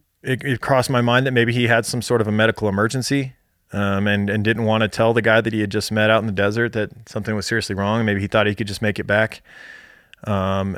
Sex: male